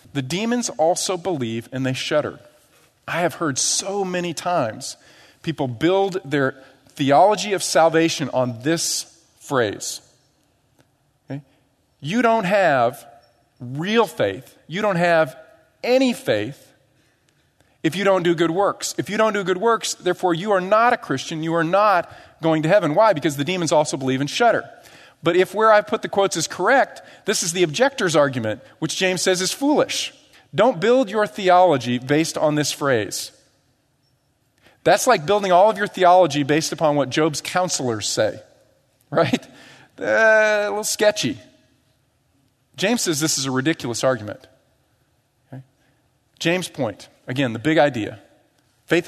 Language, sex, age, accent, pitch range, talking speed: English, male, 40-59, American, 135-190 Hz, 150 wpm